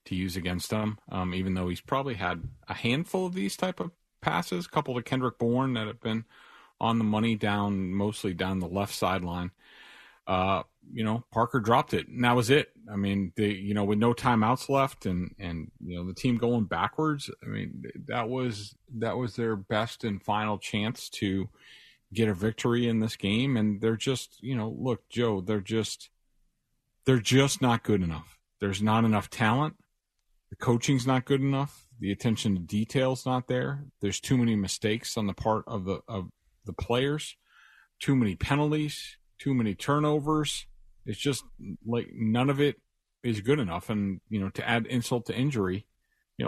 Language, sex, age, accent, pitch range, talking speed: English, male, 40-59, American, 100-130 Hz, 185 wpm